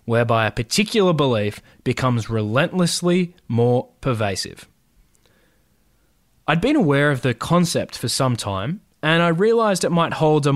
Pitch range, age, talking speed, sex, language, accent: 115-155 Hz, 20-39, 135 wpm, male, English, Australian